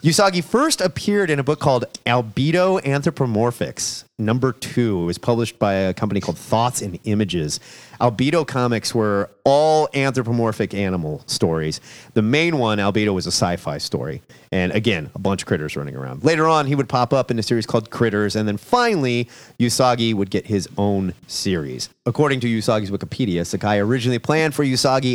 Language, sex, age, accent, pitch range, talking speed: English, male, 30-49, American, 95-130 Hz, 175 wpm